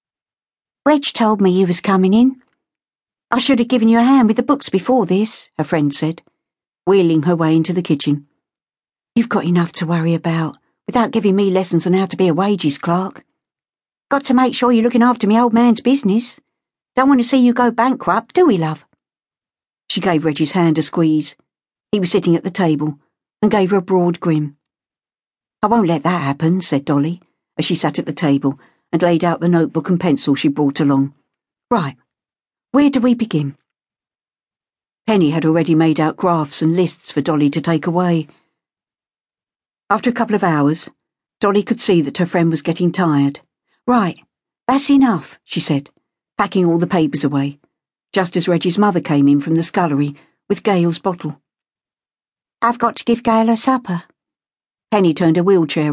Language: English